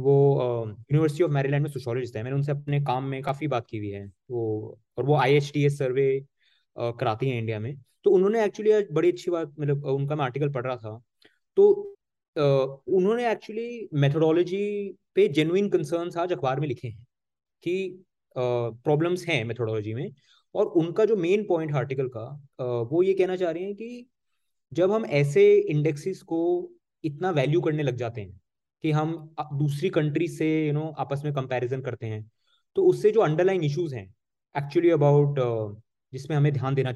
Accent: native